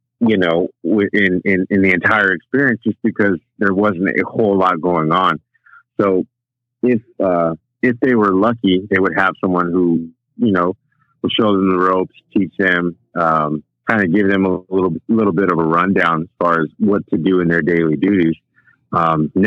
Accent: American